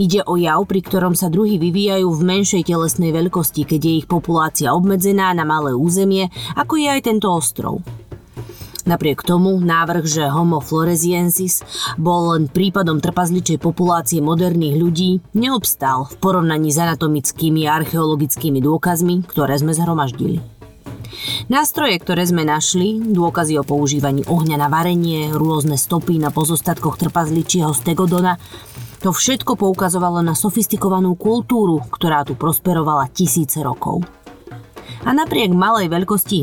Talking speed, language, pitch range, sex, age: 130 wpm, Slovak, 150-185 Hz, female, 30-49